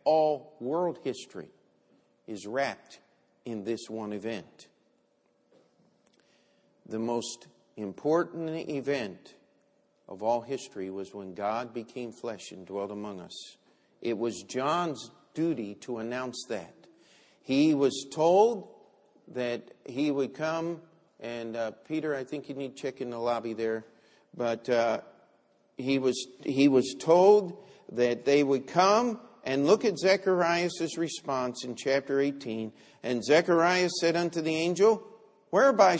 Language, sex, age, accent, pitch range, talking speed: English, male, 50-69, American, 125-180 Hz, 130 wpm